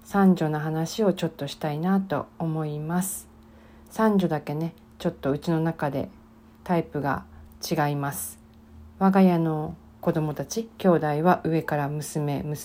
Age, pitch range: 40-59, 145-185 Hz